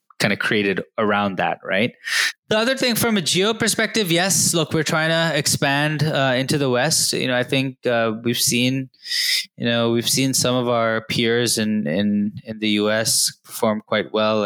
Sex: male